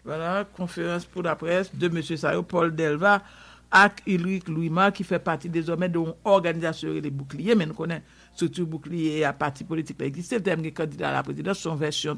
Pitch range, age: 160-190 Hz, 60-79